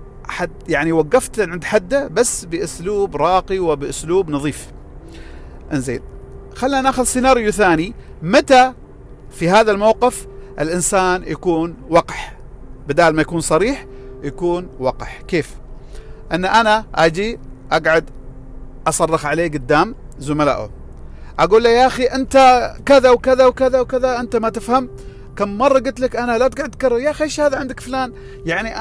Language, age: Arabic, 40-59